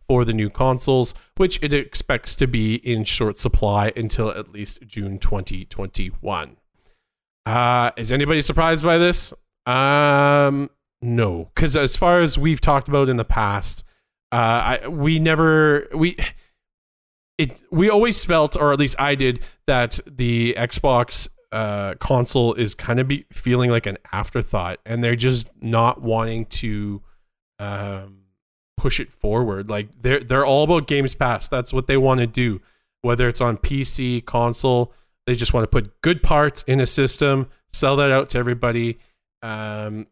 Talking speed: 160 wpm